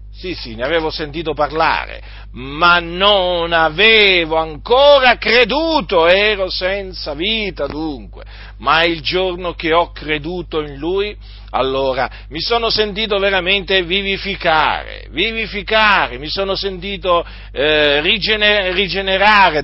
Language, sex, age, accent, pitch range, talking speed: Italian, male, 50-69, native, 120-190 Hz, 105 wpm